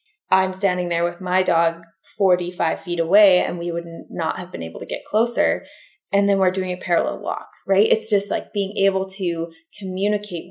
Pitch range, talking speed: 180-225 Hz, 195 wpm